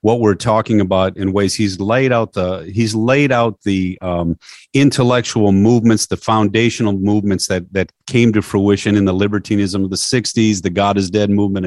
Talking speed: 185 wpm